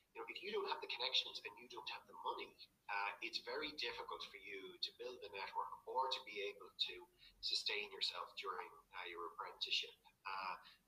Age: 30-49